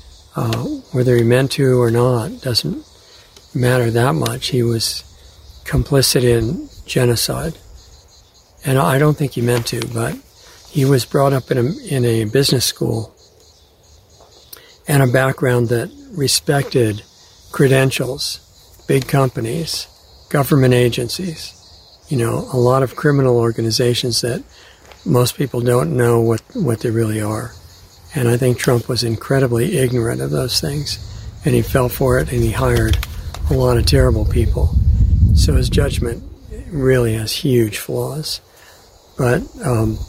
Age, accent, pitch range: 60-79, American, 105-130 Hz